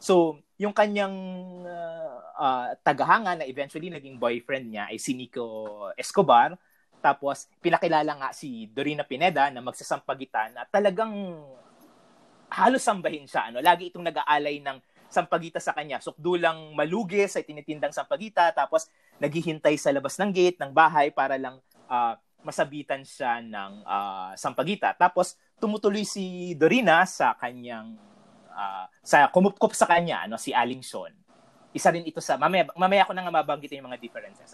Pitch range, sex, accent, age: 140-190 Hz, male, native, 30-49